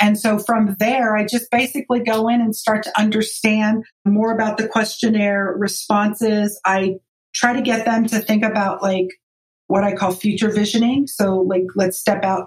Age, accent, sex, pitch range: 40-59, American, female, 185-215 Hz